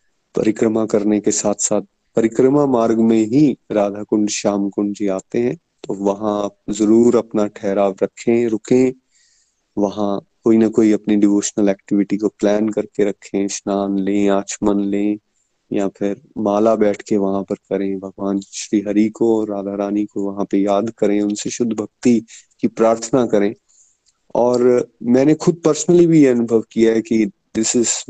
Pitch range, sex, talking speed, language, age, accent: 100-115 Hz, male, 155 wpm, Hindi, 30-49, native